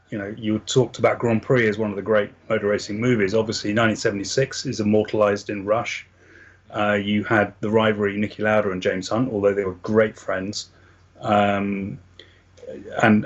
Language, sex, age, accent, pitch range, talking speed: English, male, 30-49, British, 100-115 Hz, 170 wpm